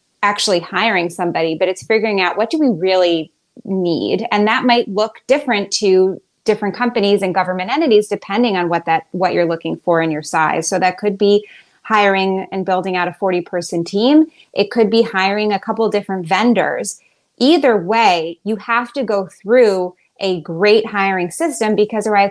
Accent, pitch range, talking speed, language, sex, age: American, 185-220 Hz, 180 wpm, English, female, 20-39